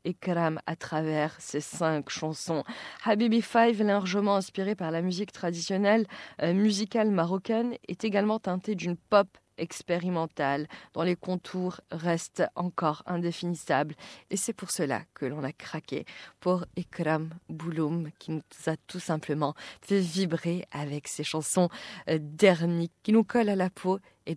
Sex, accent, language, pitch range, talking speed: female, French, French, 160-200 Hz, 140 wpm